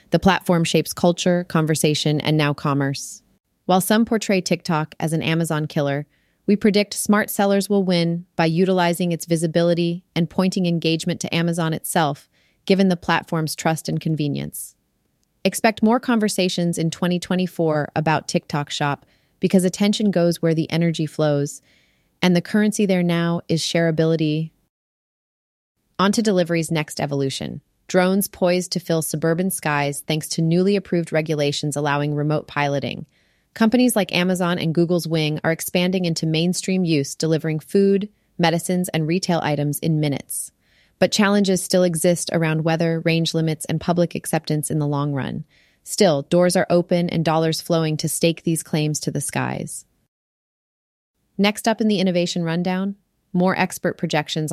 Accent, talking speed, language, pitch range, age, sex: American, 150 wpm, English, 155-185 Hz, 30-49, female